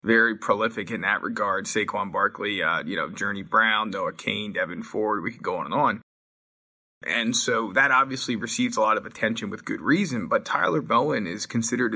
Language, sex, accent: English, male, American